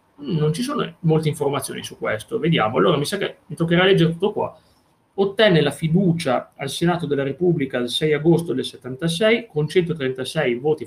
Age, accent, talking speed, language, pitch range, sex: 30-49, native, 175 wpm, Italian, 130-170 Hz, male